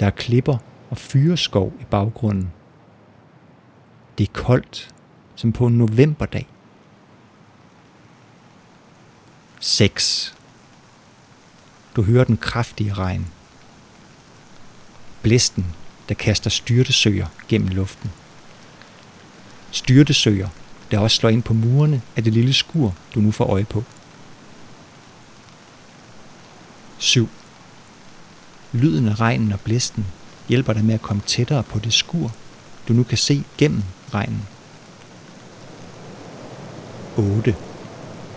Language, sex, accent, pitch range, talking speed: Danish, male, native, 105-130 Hz, 100 wpm